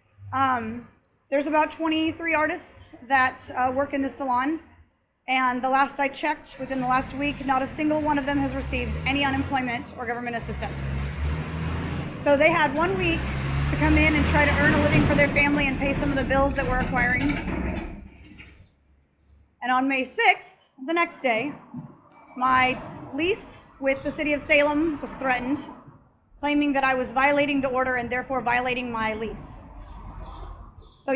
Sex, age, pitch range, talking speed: female, 30-49, 240-315 Hz, 170 wpm